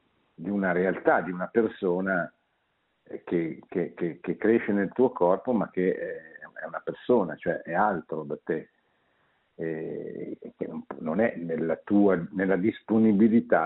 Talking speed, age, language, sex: 140 wpm, 60-79, Italian, male